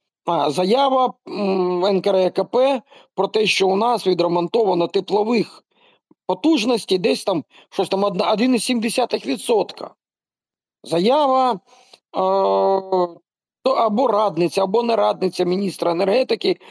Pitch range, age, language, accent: 175-230 Hz, 40-59, Ukrainian, native